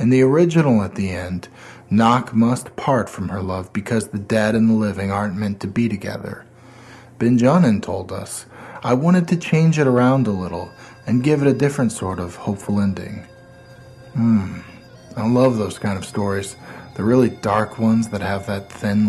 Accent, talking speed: American, 185 wpm